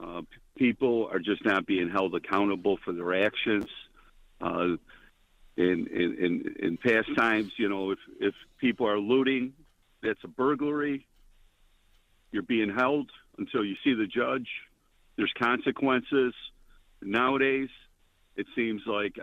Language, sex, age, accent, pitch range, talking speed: English, male, 50-69, American, 95-125 Hz, 135 wpm